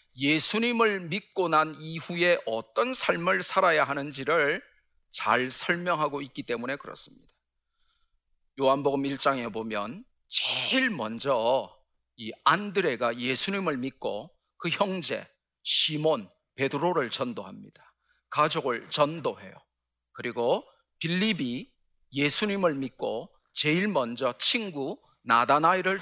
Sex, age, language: male, 40-59, Korean